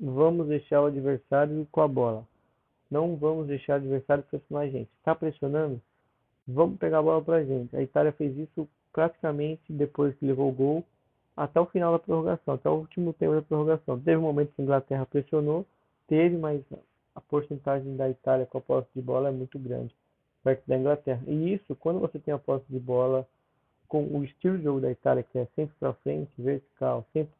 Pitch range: 135-160 Hz